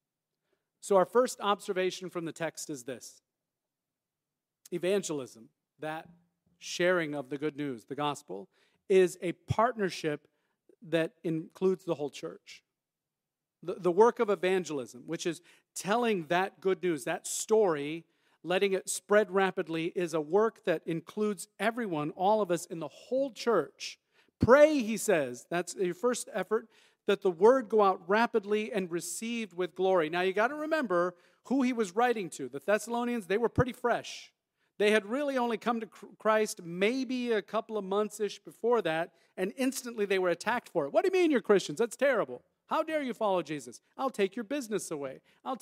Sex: male